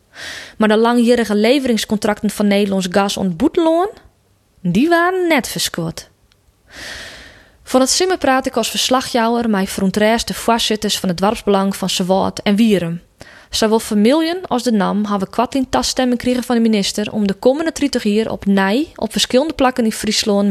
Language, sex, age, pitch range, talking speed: Dutch, female, 20-39, 195-245 Hz, 165 wpm